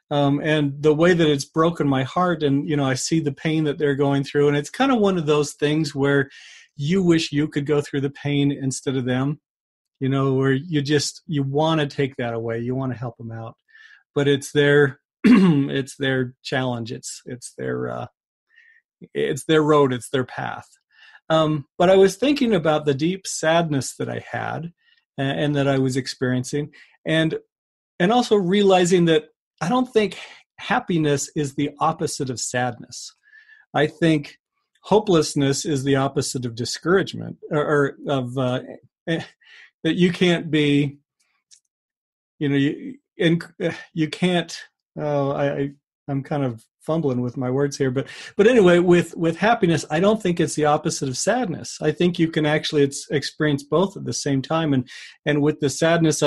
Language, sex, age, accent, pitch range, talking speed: English, male, 40-59, American, 140-170 Hz, 180 wpm